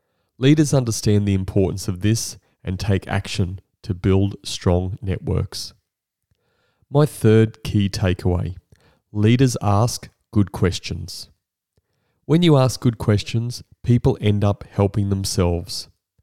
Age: 30-49